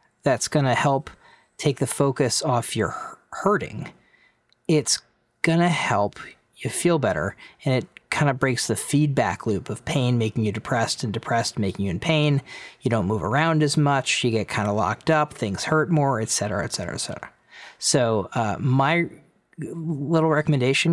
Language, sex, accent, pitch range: English, male, American, 115-150 Hz